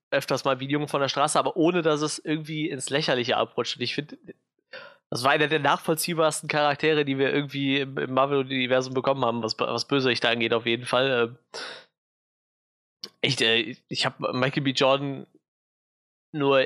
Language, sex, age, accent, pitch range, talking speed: German, male, 20-39, German, 130-145 Hz, 175 wpm